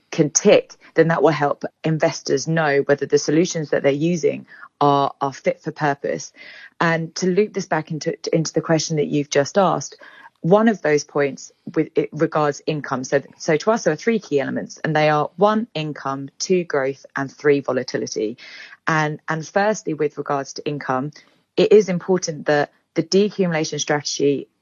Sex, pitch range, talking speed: female, 145-170 Hz, 180 wpm